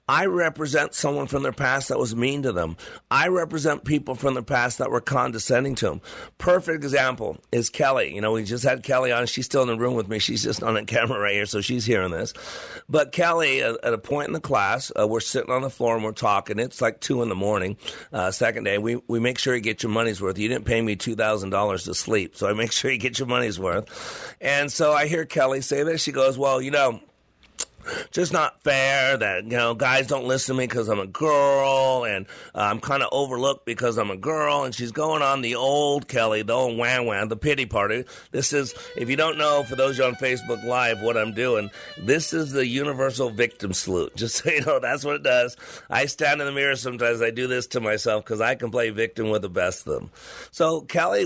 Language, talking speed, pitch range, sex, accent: English, 240 wpm, 115-140 Hz, male, American